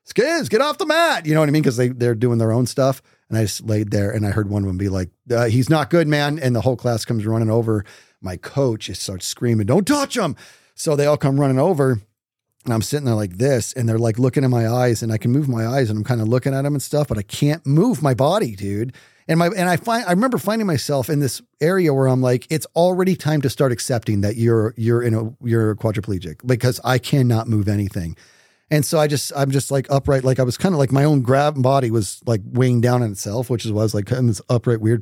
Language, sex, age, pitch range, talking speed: English, male, 40-59, 115-145 Hz, 270 wpm